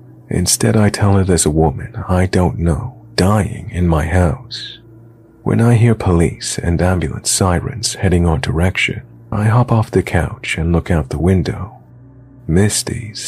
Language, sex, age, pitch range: English, male, 40-59, 80-115 Hz